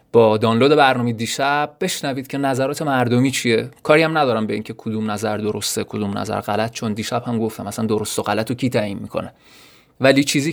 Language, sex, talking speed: Persian, male, 190 wpm